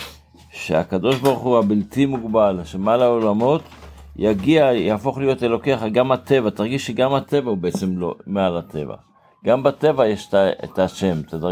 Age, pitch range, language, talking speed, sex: 60-79, 100-130 Hz, Hebrew, 140 wpm, male